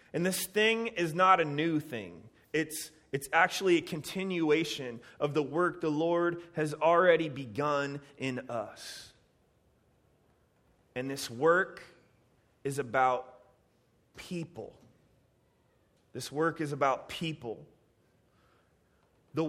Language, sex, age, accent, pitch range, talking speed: English, male, 30-49, American, 140-185 Hz, 110 wpm